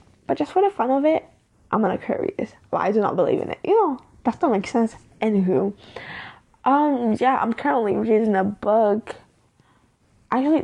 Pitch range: 200-255 Hz